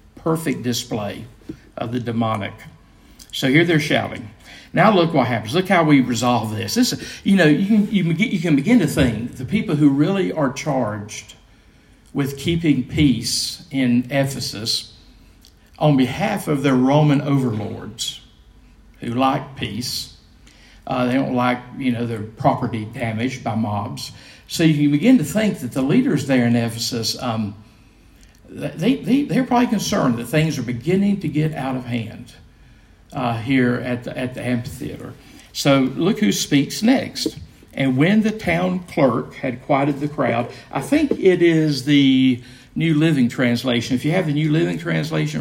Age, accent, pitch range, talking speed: 50-69, American, 120-155 Hz, 160 wpm